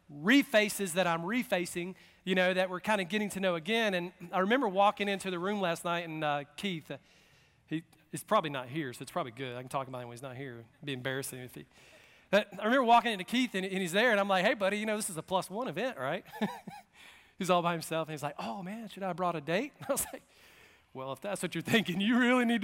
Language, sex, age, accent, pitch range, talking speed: English, male, 40-59, American, 165-220 Hz, 270 wpm